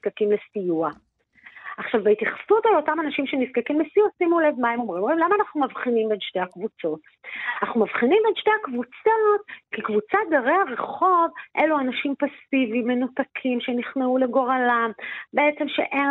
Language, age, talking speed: Hebrew, 40-59, 140 wpm